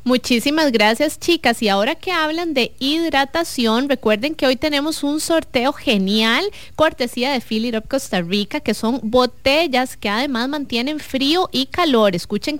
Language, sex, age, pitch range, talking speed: English, female, 20-39, 205-280 Hz, 150 wpm